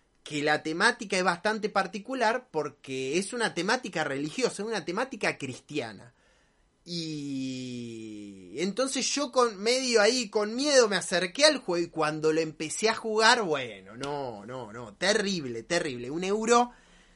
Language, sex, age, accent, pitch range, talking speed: Spanish, male, 20-39, Argentinian, 155-230 Hz, 145 wpm